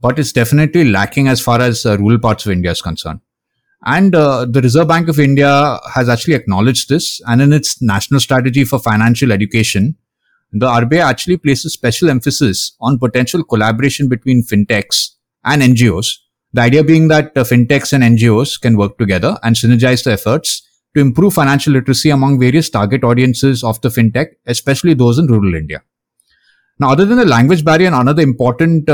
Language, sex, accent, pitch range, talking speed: English, male, Indian, 115-150 Hz, 175 wpm